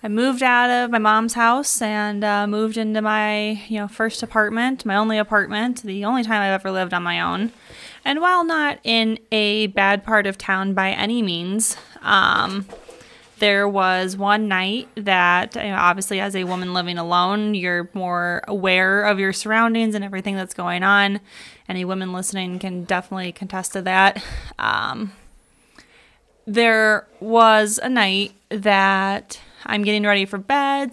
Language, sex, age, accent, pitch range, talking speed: English, female, 20-39, American, 195-220 Hz, 165 wpm